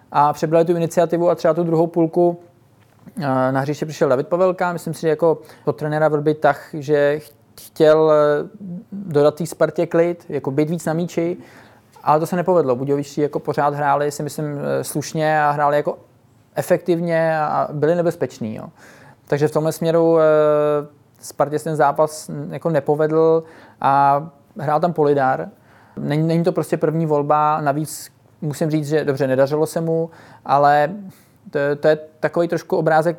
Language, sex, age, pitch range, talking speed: Czech, male, 20-39, 140-165 Hz, 155 wpm